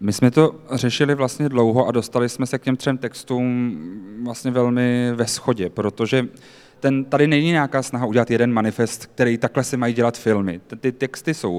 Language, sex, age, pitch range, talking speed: Czech, male, 30-49, 120-135 Hz, 185 wpm